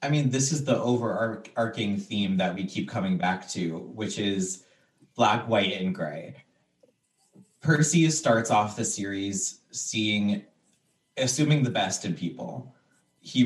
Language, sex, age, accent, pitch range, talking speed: English, male, 20-39, American, 110-145 Hz, 140 wpm